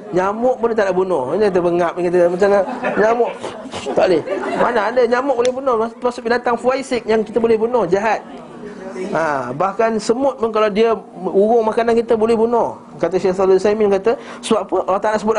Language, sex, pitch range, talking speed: Malay, male, 175-225 Hz, 180 wpm